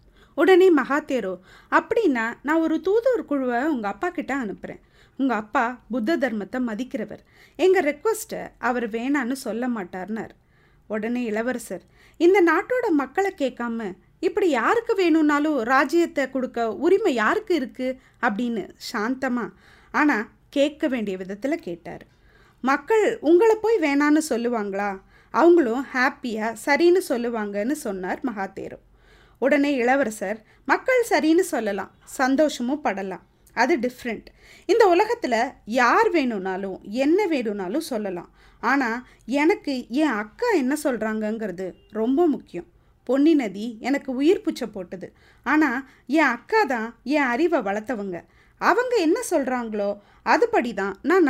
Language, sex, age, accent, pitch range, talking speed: Tamil, female, 20-39, native, 225-325 Hz, 110 wpm